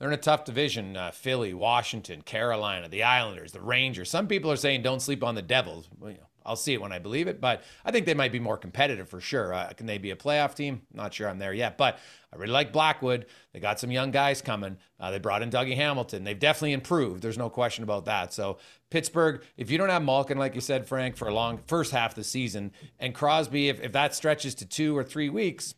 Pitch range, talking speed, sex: 120-165 Hz, 255 wpm, male